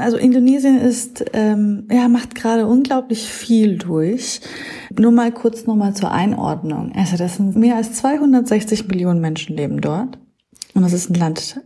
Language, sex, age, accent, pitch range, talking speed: German, female, 30-49, German, 175-245 Hz, 165 wpm